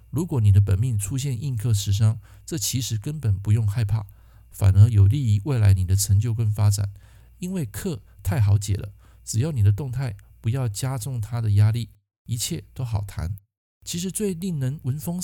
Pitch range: 100-125 Hz